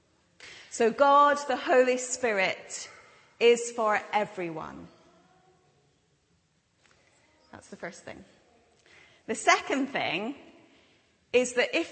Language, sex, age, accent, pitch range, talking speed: English, female, 30-49, British, 195-255 Hz, 90 wpm